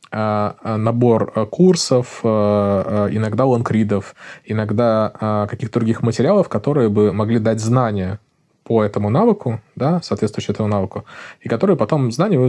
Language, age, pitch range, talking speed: Russian, 20-39, 105-130 Hz, 120 wpm